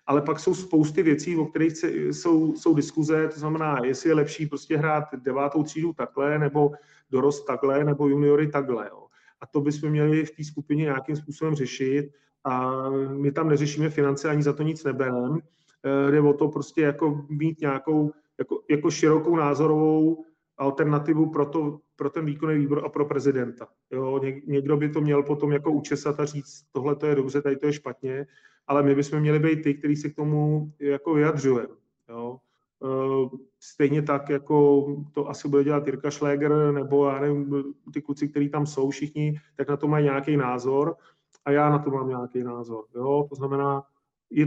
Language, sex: Czech, male